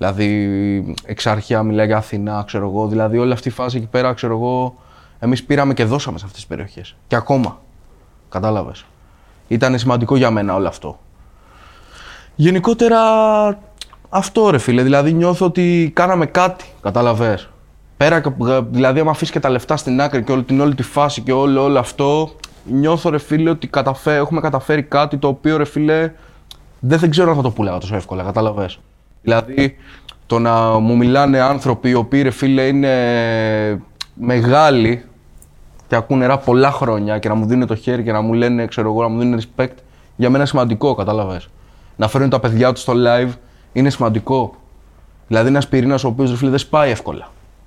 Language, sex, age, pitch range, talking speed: Greek, male, 20-39, 105-140 Hz, 175 wpm